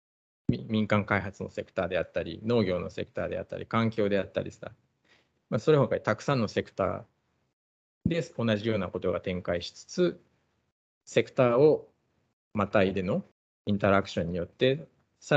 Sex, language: male, Japanese